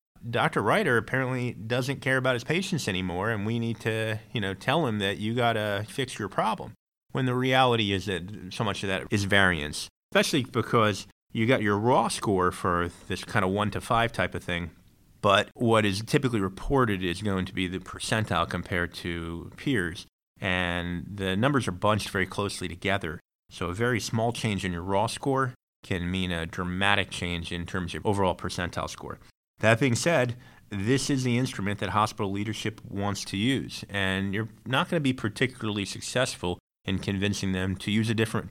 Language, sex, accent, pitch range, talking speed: English, male, American, 95-115 Hz, 190 wpm